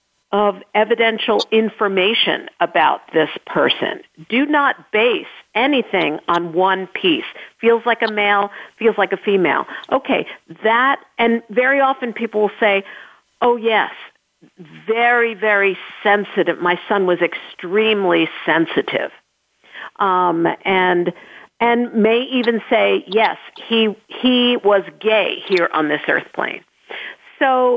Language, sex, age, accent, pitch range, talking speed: English, female, 50-69, American, 195-245 Hz, 120 wpm